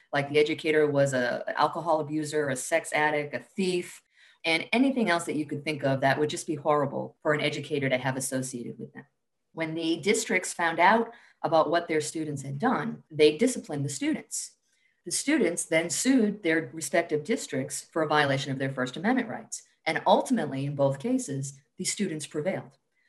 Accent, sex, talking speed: American, female, 185 wpm